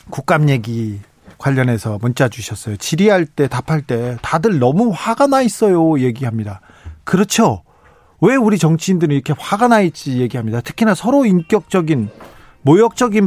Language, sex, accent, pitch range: Korean, male, native, 125-185 Hz